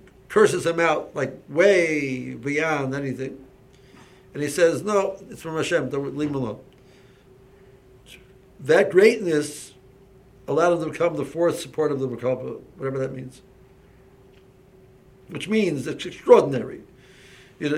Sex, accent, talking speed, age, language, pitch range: male, American, 130 wpm, 60-79, English, 130-170 Hz